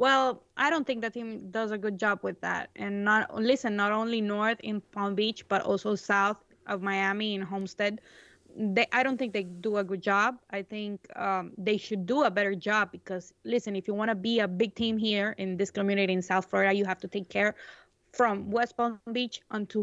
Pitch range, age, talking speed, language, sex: 200-230 Hz, 20-39, 220 wpm, English, female